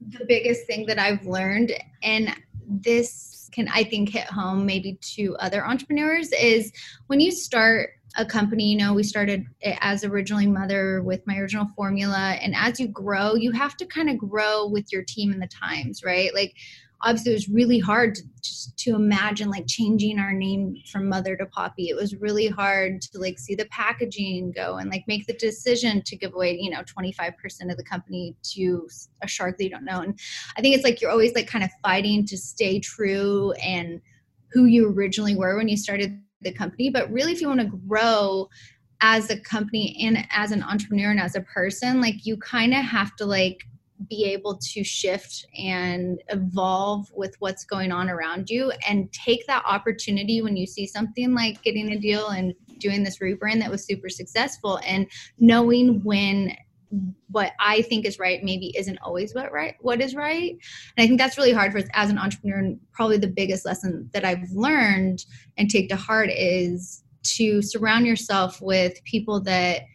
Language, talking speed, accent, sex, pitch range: English, 195 wpm, American, female, 190-220 Hz